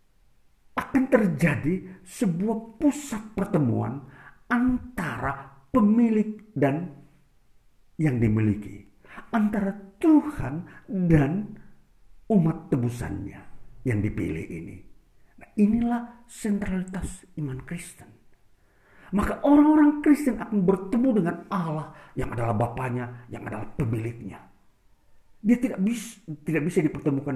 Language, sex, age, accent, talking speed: Indonesian, male, 50-69, native, 90 wpm